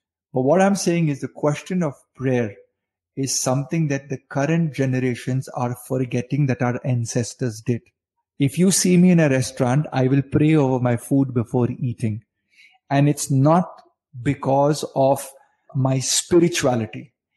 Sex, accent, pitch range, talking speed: male, native, 125-160 Hz, 150 wpm